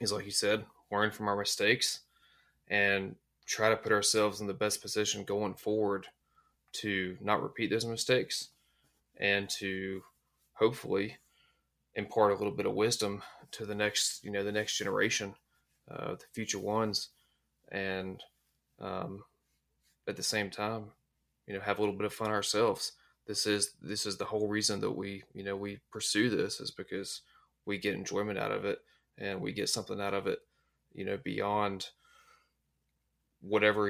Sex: male